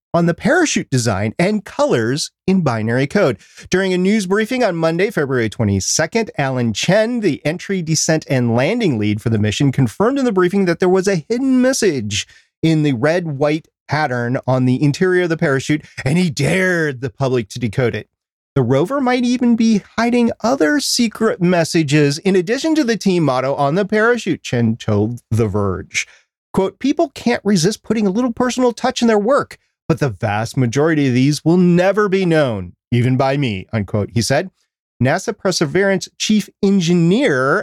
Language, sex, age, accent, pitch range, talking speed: English, male, 30-49, American, 135-205 Hz, 180 wpm